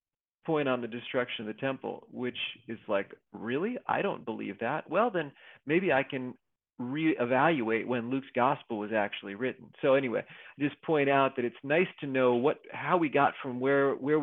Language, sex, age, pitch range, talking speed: English, male, 40-59, 115-140 Hz, 190 wpm